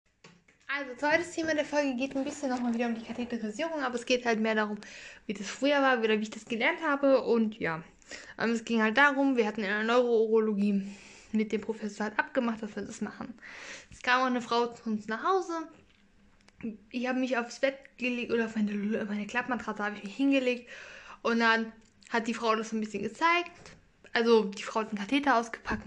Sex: female